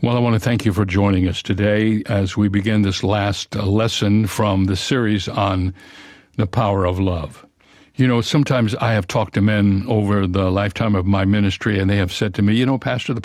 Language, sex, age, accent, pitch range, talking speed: English, male, 60-79, American, 100-135 Hz, 220 wpm